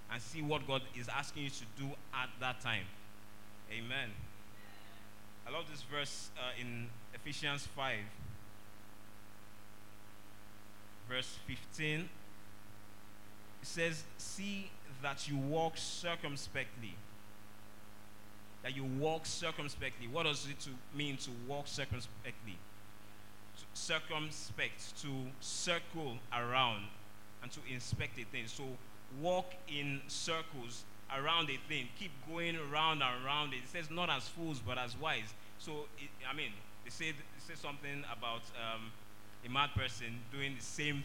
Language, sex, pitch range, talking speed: English, male, 105-145 Hz, 130 wpm